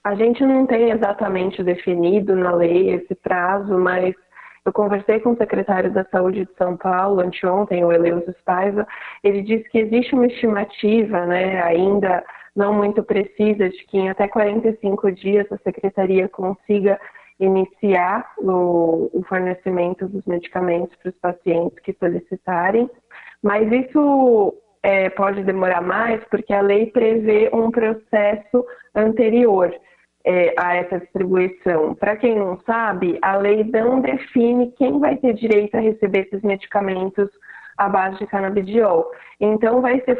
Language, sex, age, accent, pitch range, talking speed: Portuguese, female, 20-39, Brazilian, 185-225 Hz, 140 wpm